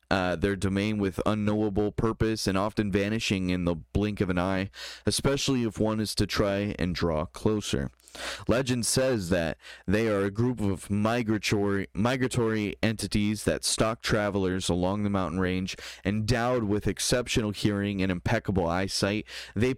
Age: 20-39